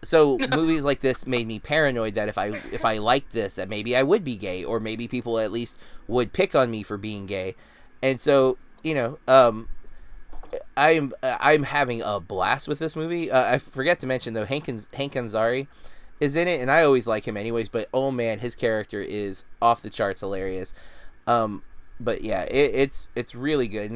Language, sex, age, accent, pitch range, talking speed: English, male, 20-39, American, 110-135 Hz, 205 wpm